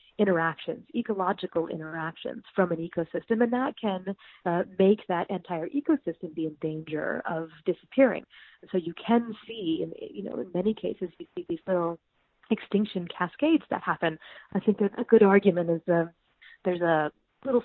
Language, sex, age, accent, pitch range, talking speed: English, female, 30-49, American, 175-220 Hz, 165 wpm